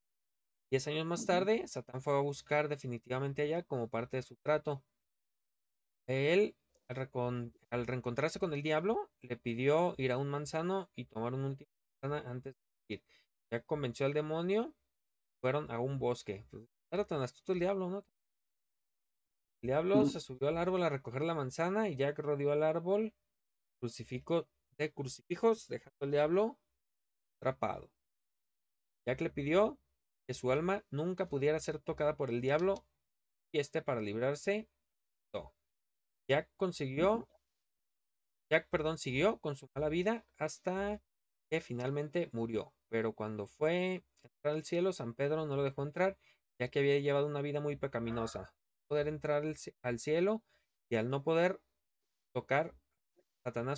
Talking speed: 150 wpm